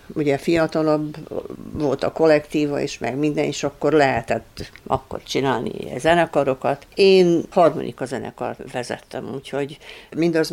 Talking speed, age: 115 wpm, 60-79